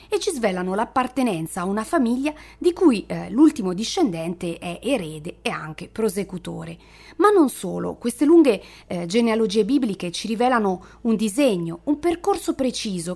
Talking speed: 145 wpm